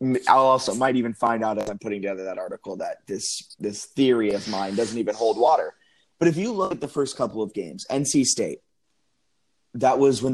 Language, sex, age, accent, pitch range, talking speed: English, male, 20-39, American, 105-135 Hz, 215 wpm